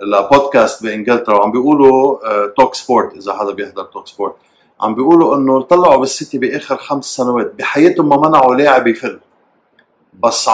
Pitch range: 125-165 Hz